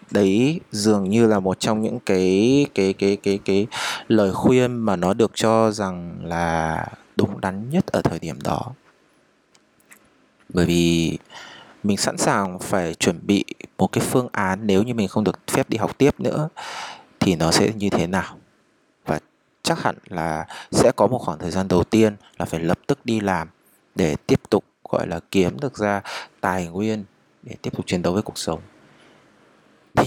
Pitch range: 90-115 Hz